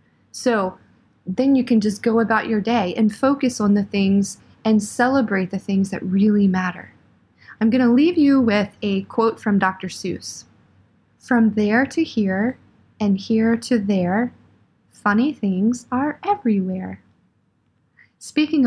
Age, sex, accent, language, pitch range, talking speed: 20-39, female, American, English, 200-245 Hz, 145 wpm